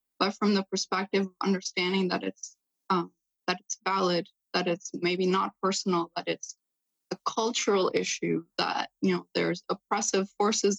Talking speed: 155 wpm